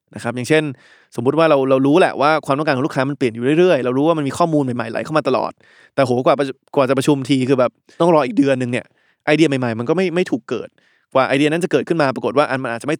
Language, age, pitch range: Thai, 20-39, 125-160 Hz